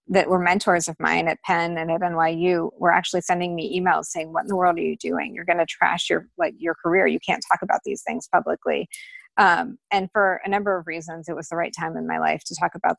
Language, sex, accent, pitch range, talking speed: English, female, American, 165-200 Hz, 255 wpm